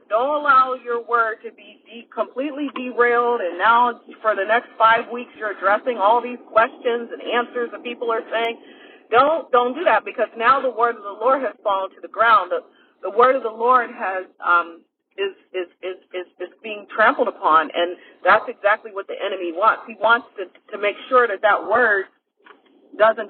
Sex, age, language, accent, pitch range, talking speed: female, 40-59, English, American, 205-270 Hz, 195 wpm